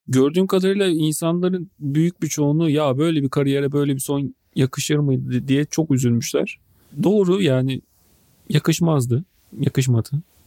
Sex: male